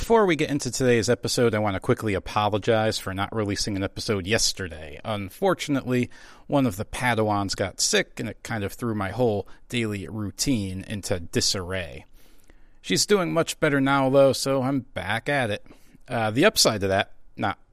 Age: 40-59